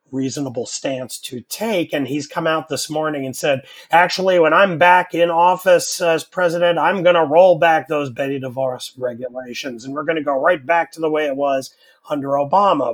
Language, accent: English, American